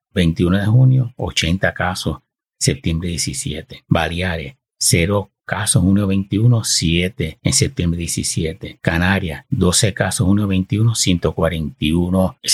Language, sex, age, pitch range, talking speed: Spanish, male, 60-79, 85-100 Hz, 105 wpm